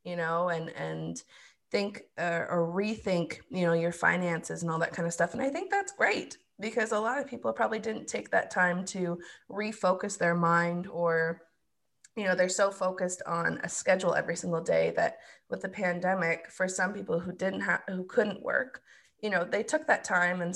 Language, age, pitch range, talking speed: English, 20-39, 170-195 Hz, 200 wpm